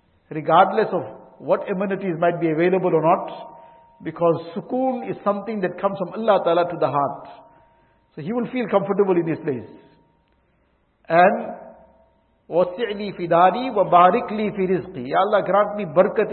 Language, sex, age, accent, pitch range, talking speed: English, male, 50-69, Indian, 165-205 Hz, 145 wpm